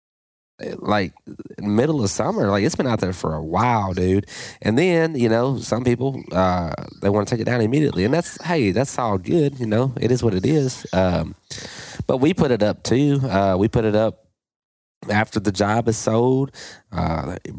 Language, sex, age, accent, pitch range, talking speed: English, male, 20-39, American, 95-115 Hz, 200 wpm